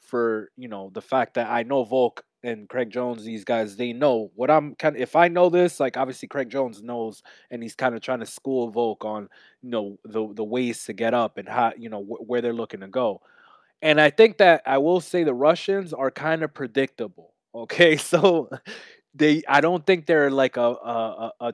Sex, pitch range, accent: male, 115-140 Hz, American